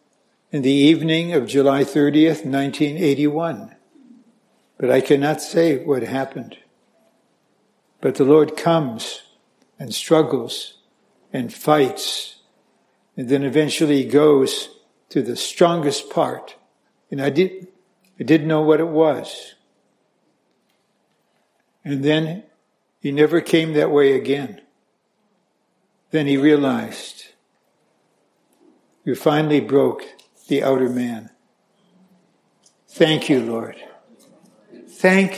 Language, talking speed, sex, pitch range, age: English, 100 wpm, male, 140-200 Hz, 60-79